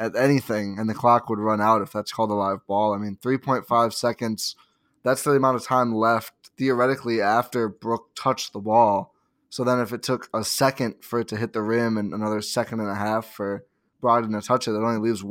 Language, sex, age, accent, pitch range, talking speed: English, male, 20-39, American, 110-130 Hz, 225 wpm